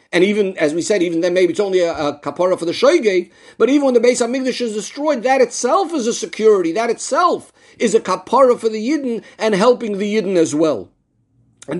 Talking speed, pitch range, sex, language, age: 225 wpm, 165-245 Hz, male, English, 50-69